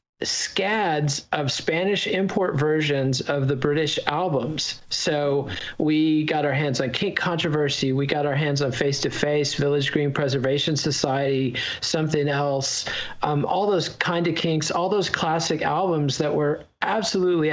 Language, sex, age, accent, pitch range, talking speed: English, male, 40-59, American, 130-155 Hz, 150 wpm